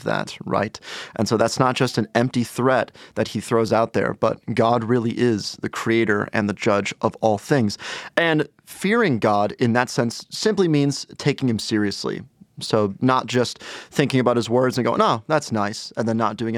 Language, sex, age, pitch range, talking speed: English, male, 30-49, 110-130 Hz, 195 wpm